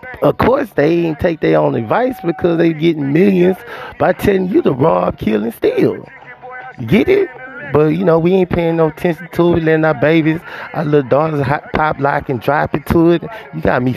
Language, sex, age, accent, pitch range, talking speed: English, male, 20-39, American, 145-180 Hz, 210 wpm